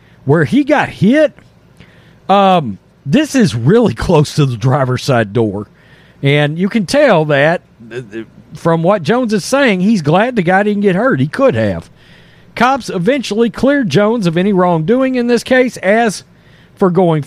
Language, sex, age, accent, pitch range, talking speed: English, male, 50-69, American, 160-260 Hz, 165 wpm